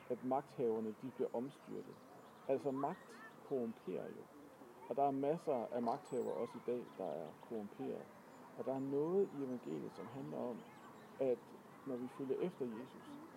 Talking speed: 160 wpm